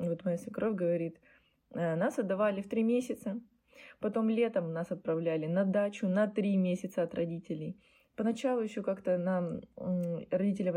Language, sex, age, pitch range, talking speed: Russian, female, 20-39, 170-215 Hz, 140 wpm